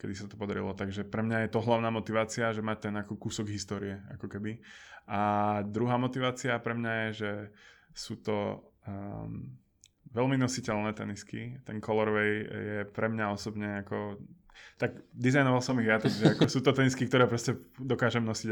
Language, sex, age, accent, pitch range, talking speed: Czech, male, 20-39, native, 105-120 Hz, 170 wpm